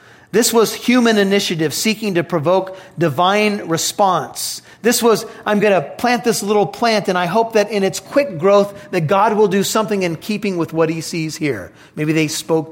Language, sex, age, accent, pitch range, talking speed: English, male, 40-59, American, 160-225 Hz, 195 wpm